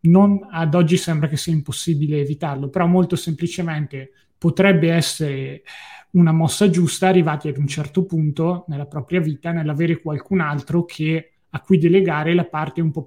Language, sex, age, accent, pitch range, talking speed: Italian, male, 20-39, native, 145-170 Hz, 160 wpm